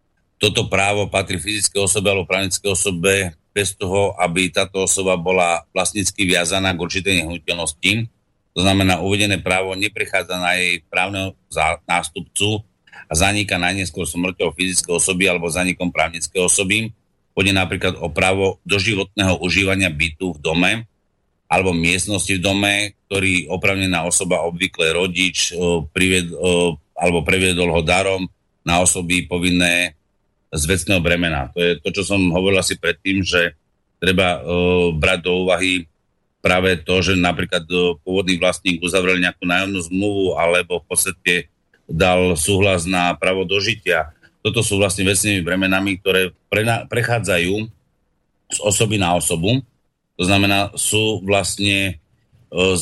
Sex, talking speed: male, 135 wpm